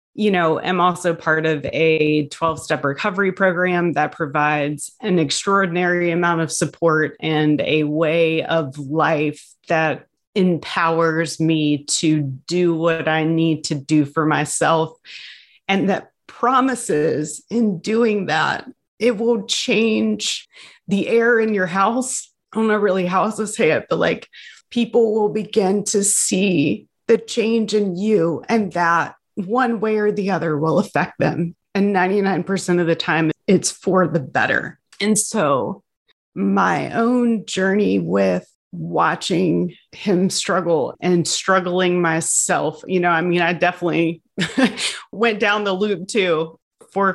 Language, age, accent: English, 30-49, American